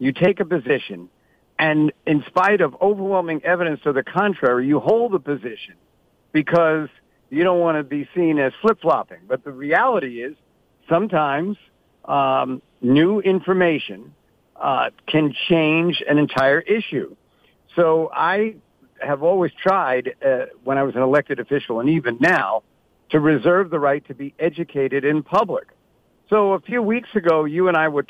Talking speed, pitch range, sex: 155 wpm, 135-175 Hz, male